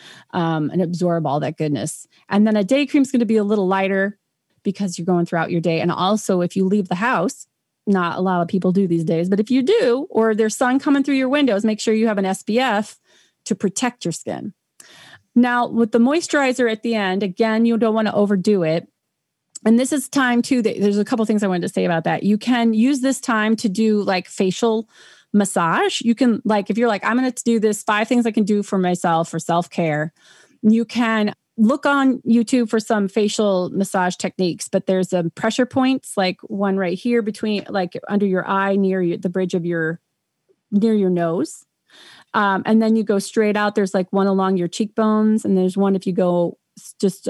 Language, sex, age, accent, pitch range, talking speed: English, female, 30-49, American, 185-230 Hz, 220 wpm